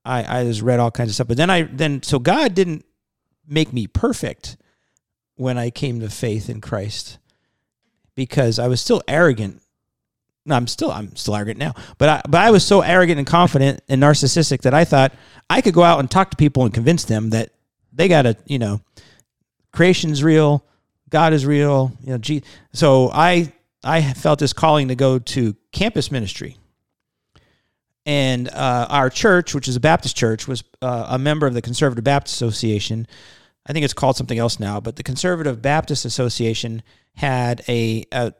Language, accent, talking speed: English, American, 190 wpm